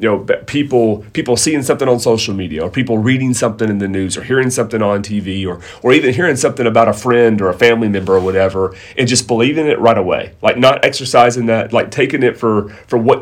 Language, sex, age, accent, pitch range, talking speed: English, male, 30-49, American, 100-125 Hz, 230 wpm